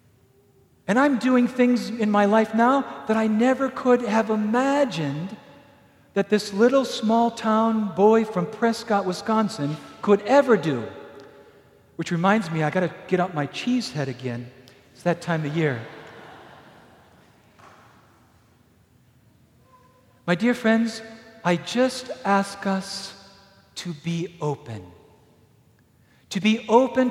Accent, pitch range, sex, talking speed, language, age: American, 165-215 Hz, male, 125 wpm, English, 50-69